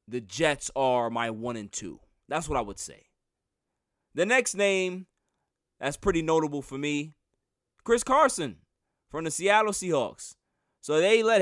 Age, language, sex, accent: 20-39, English, male, American